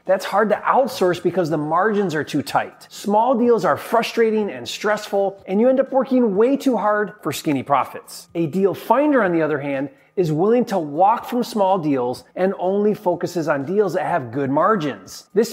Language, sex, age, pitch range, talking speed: English, male, 30-49, 155-220 Hz, 195 wpm